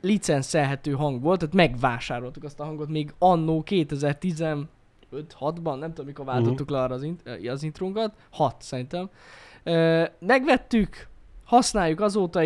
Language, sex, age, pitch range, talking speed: Hungarian, male, 10-29, 135-190 Hz, 120 wpm